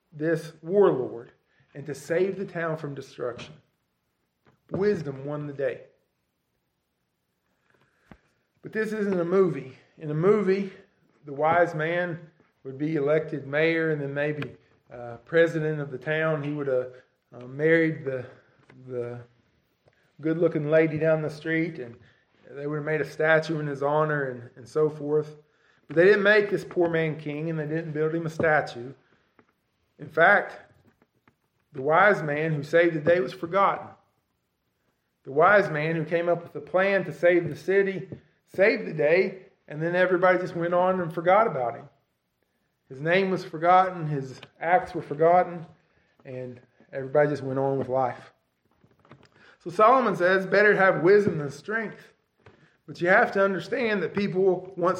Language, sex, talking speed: English, male, 160 wpm